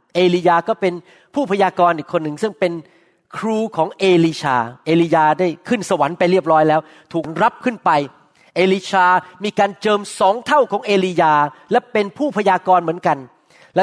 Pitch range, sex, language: 170-220 Hz, male, Thai